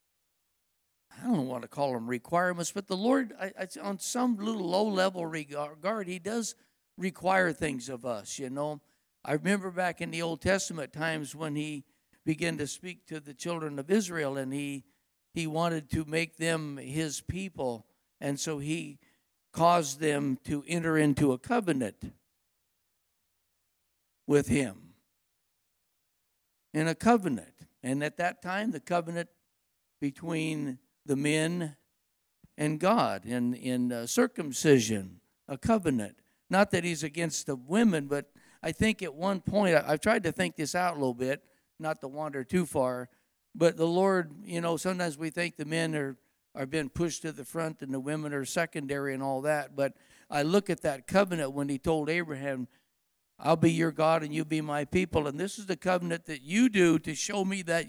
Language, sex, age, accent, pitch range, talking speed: English, male, 60-79, American, 140-180 Hz, 170 wpm